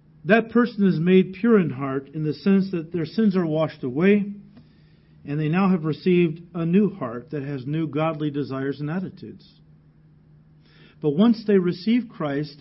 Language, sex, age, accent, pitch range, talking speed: English, male, 50-69, American, 165-235 Hz, 170 wpm